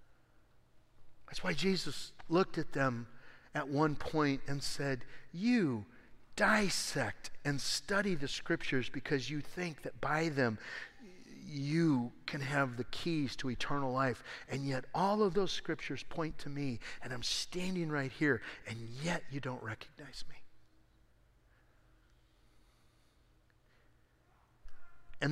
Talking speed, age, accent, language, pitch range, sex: 125 wpm, 50-69, American, English, 120-145 Hz, male